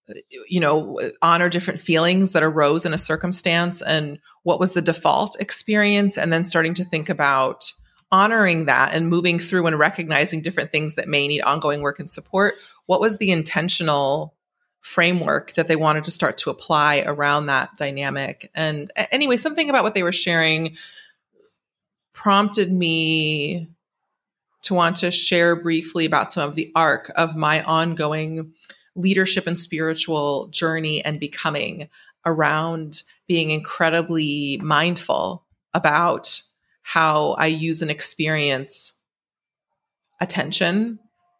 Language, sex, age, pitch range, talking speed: English, female, 30-49, 155-180 Hz, 135 wpm